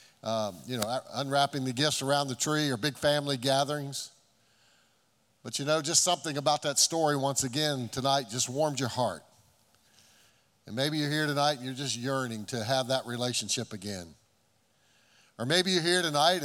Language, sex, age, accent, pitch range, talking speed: English, male, 50-69, American, 115-150 Hz, 175 wpm